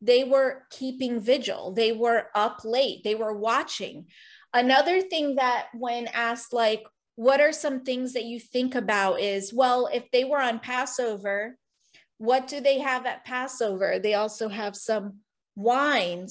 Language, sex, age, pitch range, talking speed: English, female, 30-49, 225-265 Hz, 160 wpm